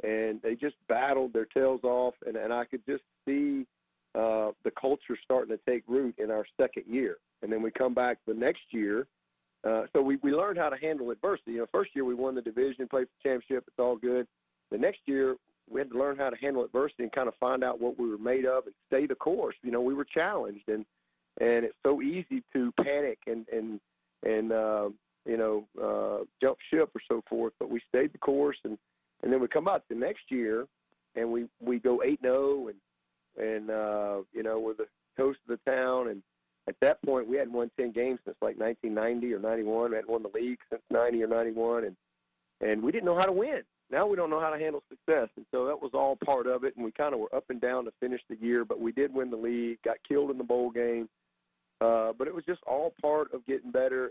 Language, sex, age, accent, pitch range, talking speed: English, male, 40-59, American, 110-130 Hz, 240 wpm